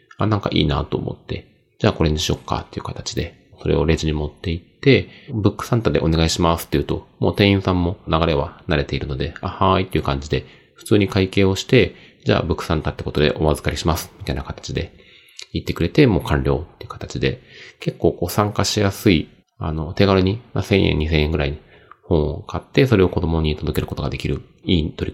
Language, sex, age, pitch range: Japanese, male, 40-59, 75-105 Hz